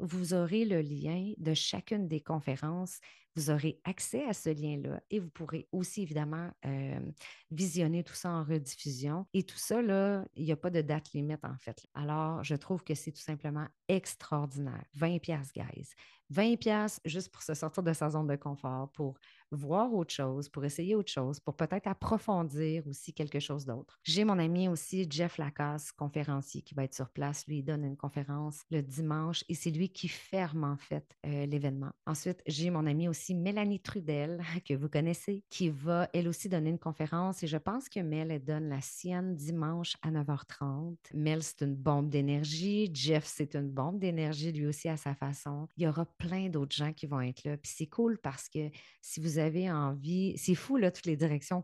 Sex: female